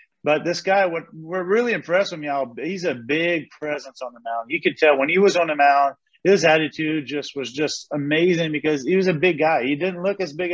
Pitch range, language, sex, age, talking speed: 145-170 Hz, English, male, 30-49, 235 wpm